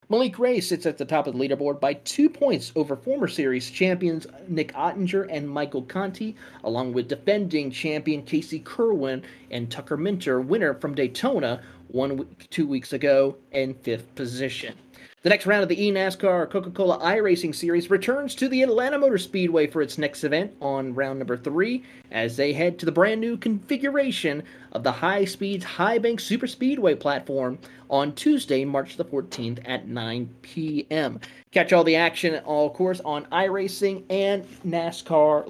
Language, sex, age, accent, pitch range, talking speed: English, male, 30-49, American, 140-195 Hz, 165 wpm